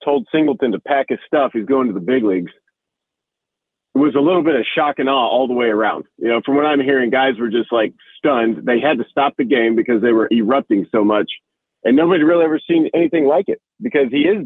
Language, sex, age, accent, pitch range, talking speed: English, male, 40-59, American, 120-160 Hz, 245 wpm